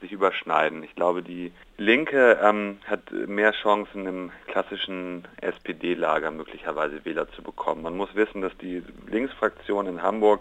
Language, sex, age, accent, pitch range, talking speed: German, male, 40-59, German, 90-100 Hz, 145 wpm